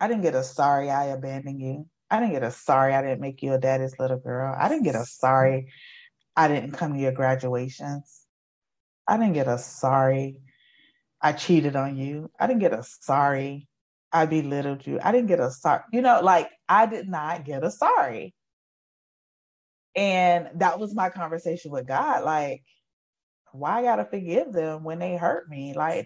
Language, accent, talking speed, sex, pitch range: English, American, 185 wpm, female, 135-180 Hz